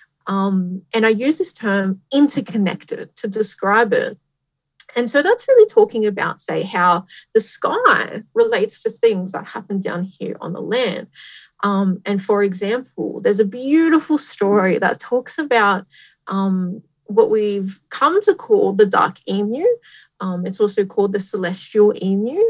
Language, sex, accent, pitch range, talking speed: English, female, Australian, 200-290 Hz, 150 wpm